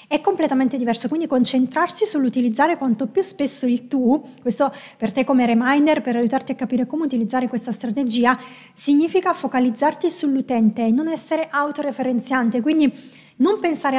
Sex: female